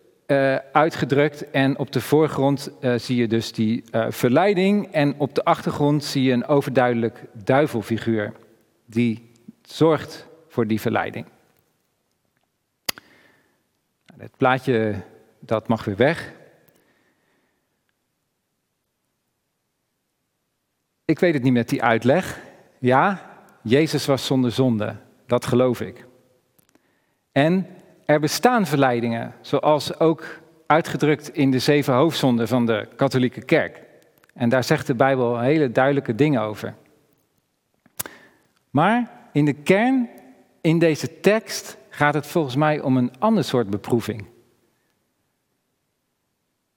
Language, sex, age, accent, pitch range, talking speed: Dutch, male, 40-59, Dutch, 120-160 Hz, 110 wpm